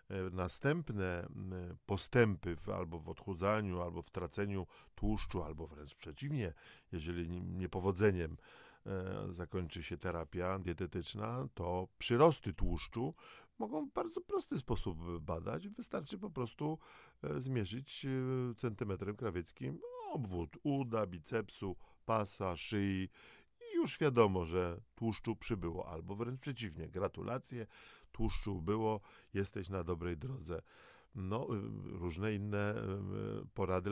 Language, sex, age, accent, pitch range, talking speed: Polish, male, 50-69, native, 90-115 Hz, 100 wpm